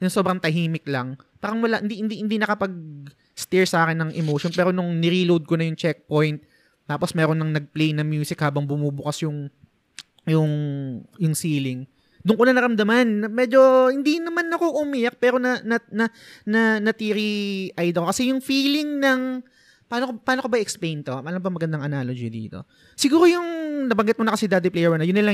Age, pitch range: 20-39, 160-235 Hz